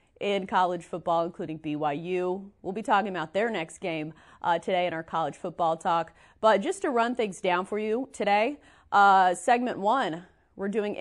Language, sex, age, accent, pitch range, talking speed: English, female, 30-49, American, 175-215 Hz, 180 wpm